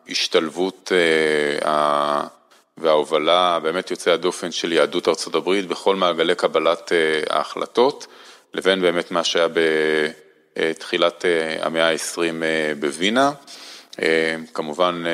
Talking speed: 85 wpm